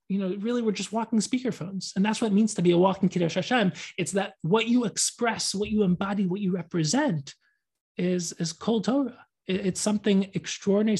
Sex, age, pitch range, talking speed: male, 20-39, 165-200 Hz, 190 wpm